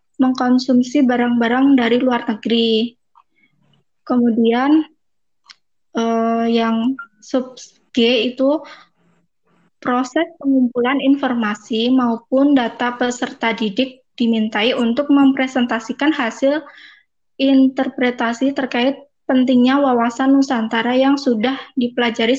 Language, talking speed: Indonesian, 80 wpm